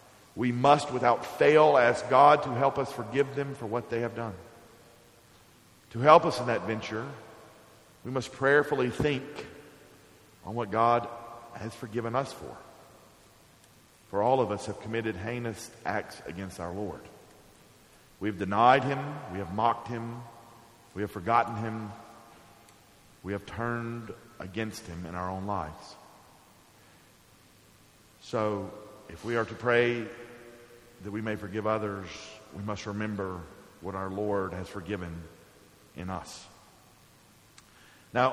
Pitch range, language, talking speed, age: 110-140 Hz, English, 135 wpm, 50-69